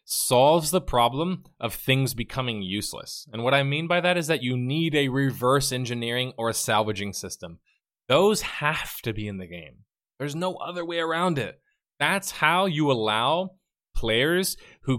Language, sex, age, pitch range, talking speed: English, male, 20-39, 105-140 Hz, 170 wpm